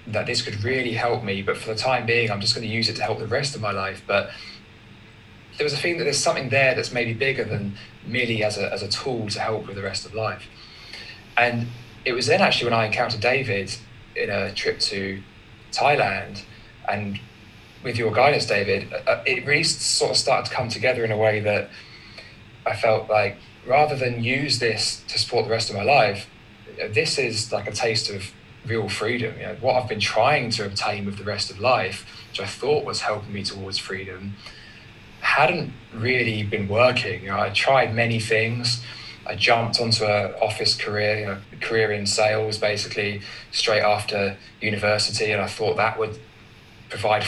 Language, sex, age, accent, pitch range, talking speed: English, male, 20-39, British, 105-120 Hz, 195 wpm